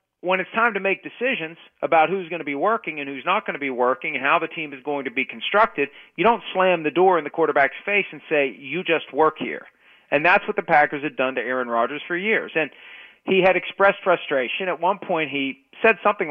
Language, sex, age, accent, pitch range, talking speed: English, male, 40-59, American, 150-200 Hz, 245 wpm